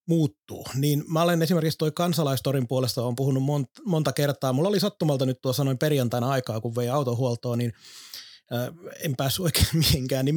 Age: 30-49